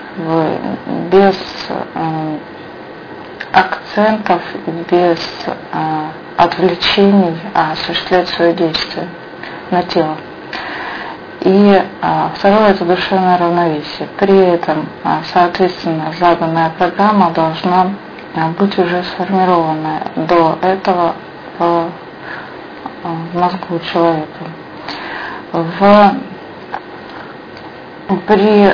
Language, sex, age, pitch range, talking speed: English, female, 30-49, 170-190 Hz, 80 wpm